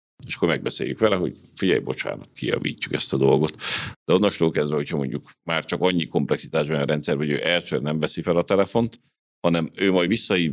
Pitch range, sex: 75-85 Hz, male